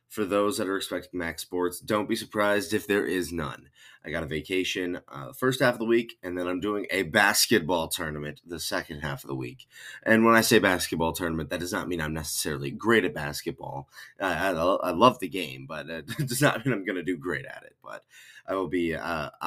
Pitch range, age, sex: 80-110 Hz, 20-39, male